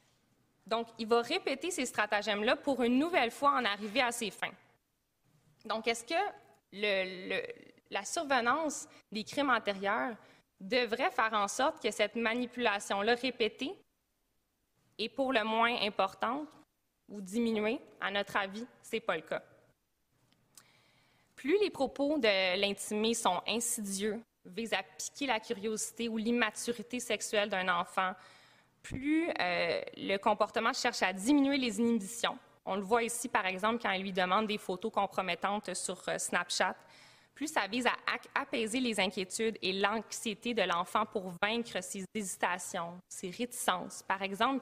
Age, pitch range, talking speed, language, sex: 20-39, 195-240 Hz, 145 wpm, English, female